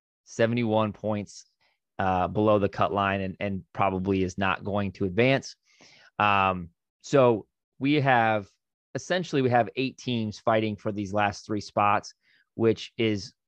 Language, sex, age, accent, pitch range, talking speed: English, male, 30-49, American, 110-130 Hz, 140 wpm